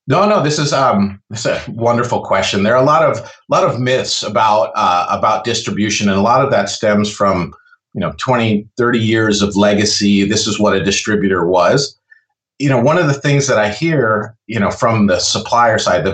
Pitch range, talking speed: 105-145 Hz, 215 wpm